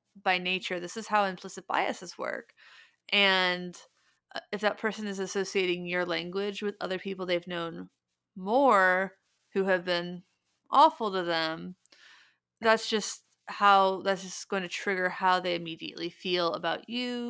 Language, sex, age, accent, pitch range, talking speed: English, female, 30-49, American, 180-205 Hz, 145 wpm